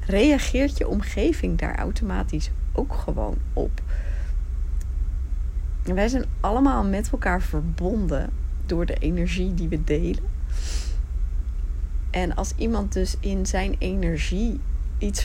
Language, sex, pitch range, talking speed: Dutch, female, 65-95 Hz, 110 wpm